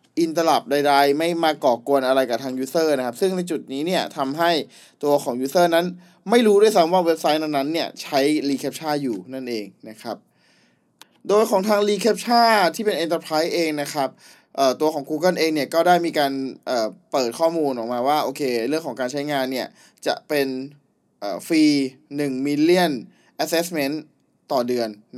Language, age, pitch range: Thai, 20-39, 140-175 Hz